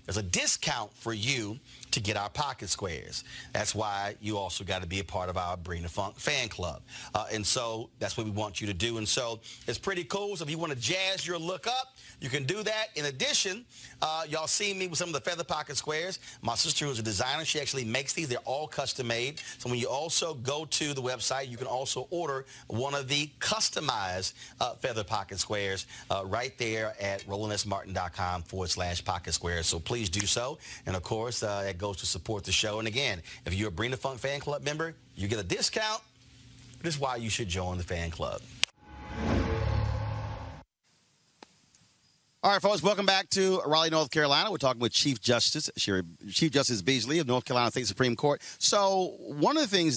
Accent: American